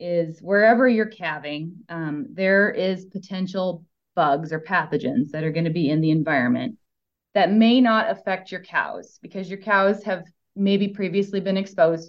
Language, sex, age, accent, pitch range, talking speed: English, female, 20-39, American, 165-200 Hz, 165 wpm